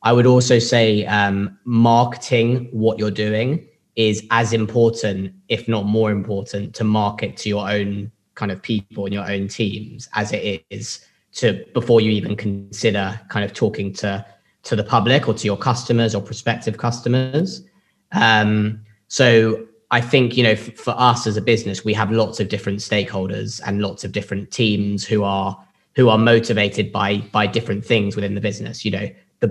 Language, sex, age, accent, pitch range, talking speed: English, male, 20-39, British, 100-115 Hz, 180 wpm